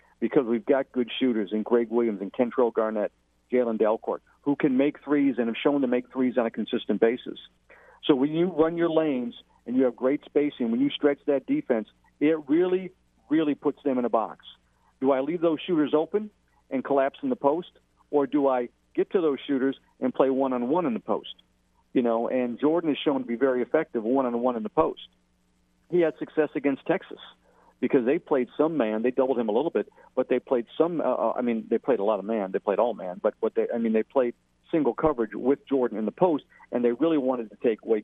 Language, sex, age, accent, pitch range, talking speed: English, male, 50-69, American, 110-145 Hz, 225 wpm